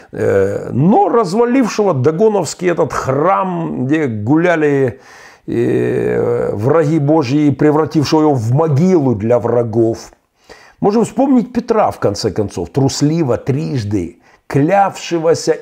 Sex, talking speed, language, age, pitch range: male, 90 wpm, Russian, 50-69, 110-150 Hz